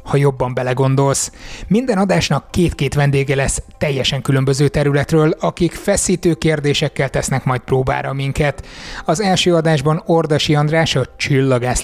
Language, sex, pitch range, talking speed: Hungarian, male, 135-160 Hz, 125 wpm